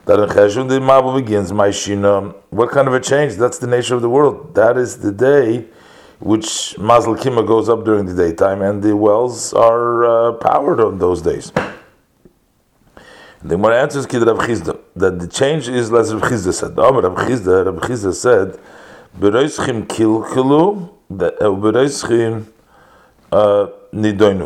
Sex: male